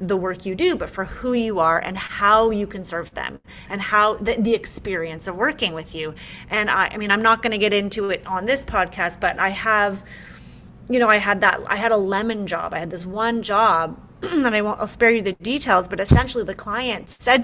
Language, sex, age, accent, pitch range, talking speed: English, female, 30-49, American, 190-235 Hz, 235 wpm